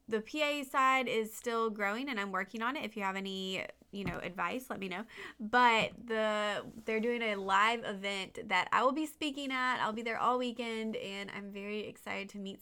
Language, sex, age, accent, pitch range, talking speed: English, female, 20-39, American, 205-255 Hz, 215 wpm